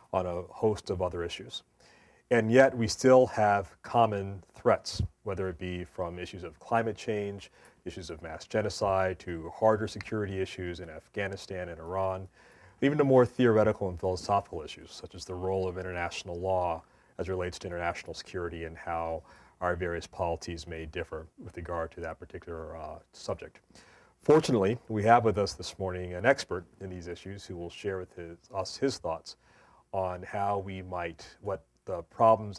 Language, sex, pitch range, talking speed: English, male, 90-105 Hz, 170 wpm